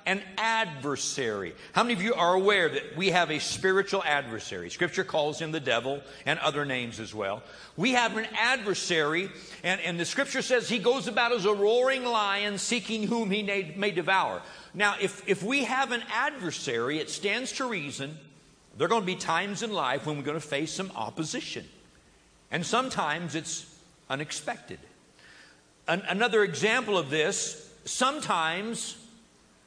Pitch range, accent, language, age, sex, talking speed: 140-215 Hz, American, English, 50-69, male, 165 wpm